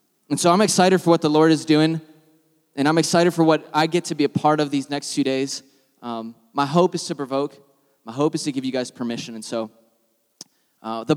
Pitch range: 130-165 Hz